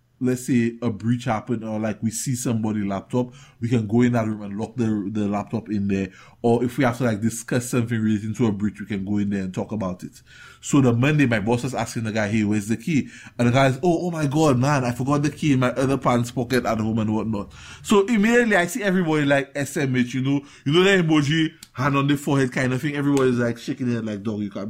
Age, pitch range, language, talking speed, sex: 20-39, 110-140 Hz, English, 260 wpm, male